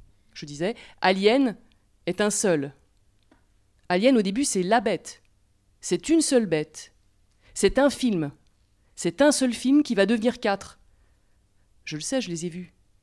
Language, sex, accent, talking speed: French, female, French, 155 wpm